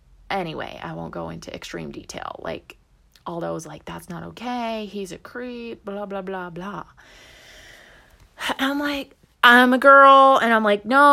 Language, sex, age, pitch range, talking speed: English, female, 20-39, 175-215 Hz, 160 wpm